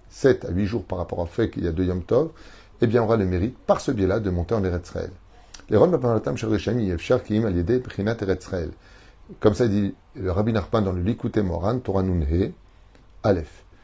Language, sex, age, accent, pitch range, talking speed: French, male, 30-49, French, 95-115 Hz, 190 wpm